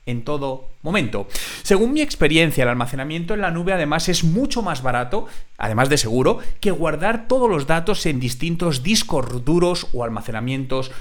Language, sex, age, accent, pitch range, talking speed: Spanish, male, 30-49, Spanish, 125-180 Hz, 165 wpm